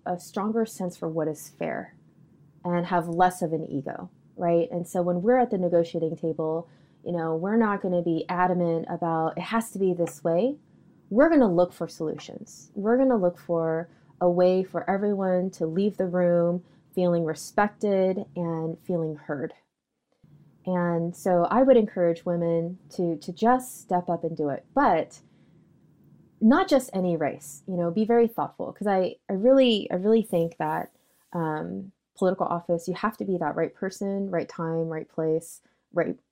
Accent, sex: American, female